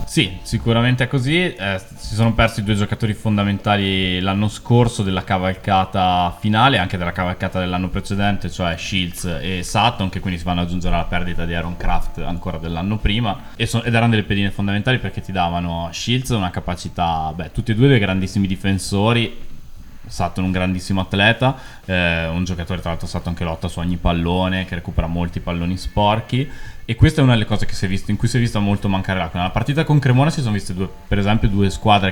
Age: 20-39